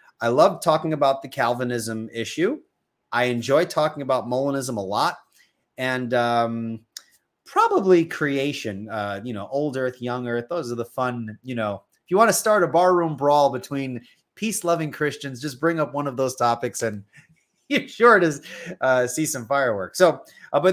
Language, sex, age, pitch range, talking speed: English, male, 30-49, 115-155 Hz, 175 wpm